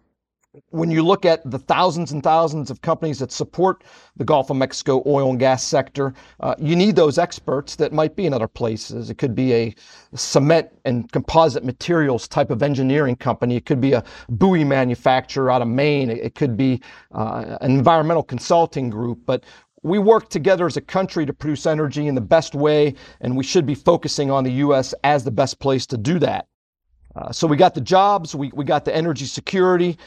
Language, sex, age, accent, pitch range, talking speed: English, male, 40-59, American, 130-165 Hz, 200 wpm